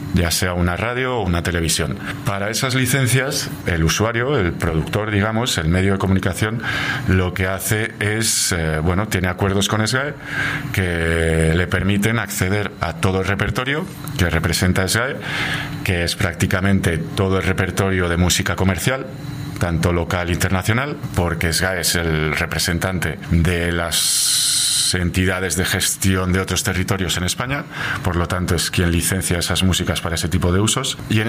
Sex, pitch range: male, 90-115 Hz